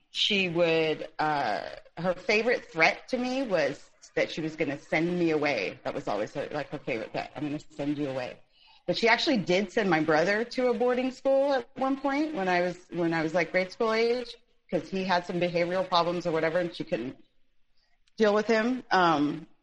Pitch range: 155-210 Hz